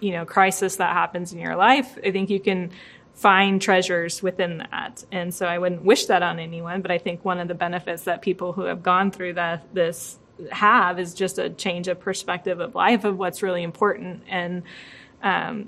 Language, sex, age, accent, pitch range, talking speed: English, female, 20-39, American, 180-200 Hz, 205 wpm